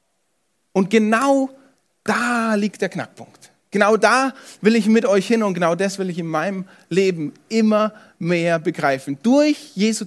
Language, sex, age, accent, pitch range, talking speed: German, male, 30-49, German, 180-245 Hz, 155 wpm